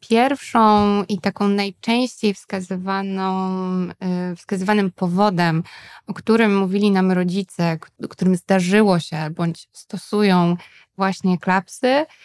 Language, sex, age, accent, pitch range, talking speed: Polish, female, 20-39, native, 185-220 Hz, 95 wpm